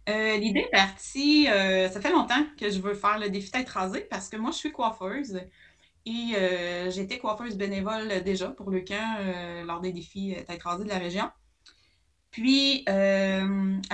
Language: French